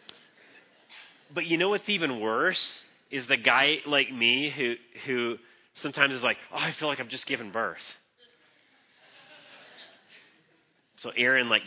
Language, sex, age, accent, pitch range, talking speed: English, male, 30-49, American, 115-165 Hz, 140 wpm